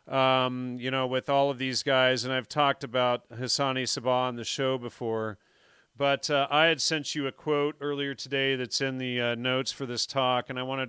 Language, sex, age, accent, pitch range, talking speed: English, male, 40-59, American, 125-155 Hz, 215 wpm